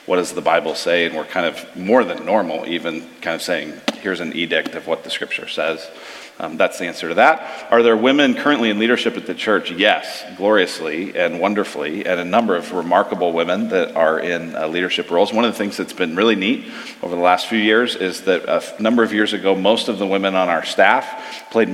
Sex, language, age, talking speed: male, English, 40-59, 230 wpm